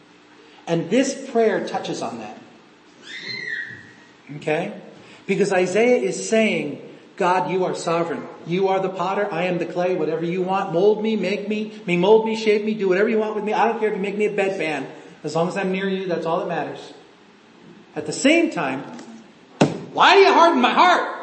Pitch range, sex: 180-265 Hz, male